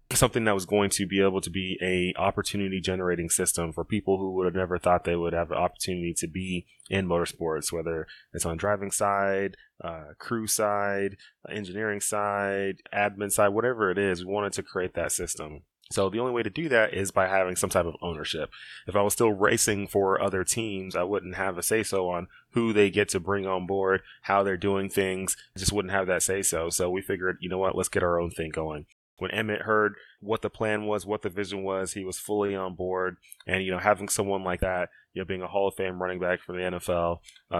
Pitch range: 90-100 Hz